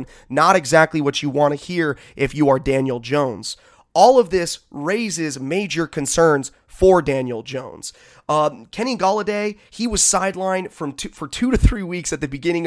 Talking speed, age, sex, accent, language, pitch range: 175 wpm, 30-49, male, American, English, 145-180 Hz